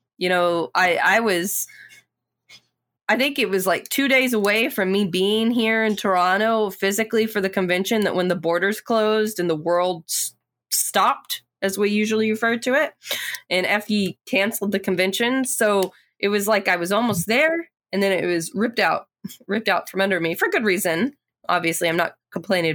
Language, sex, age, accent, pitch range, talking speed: English, female, 20-39, American, 175-215 Hz, 180 wpm